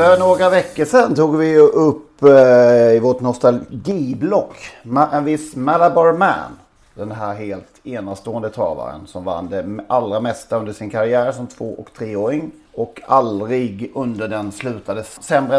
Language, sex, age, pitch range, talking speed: Swedish, male, 30-49, 100-150 Hz, 150 wpm